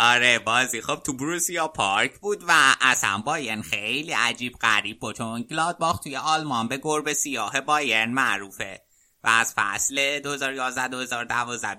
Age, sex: 30-49, male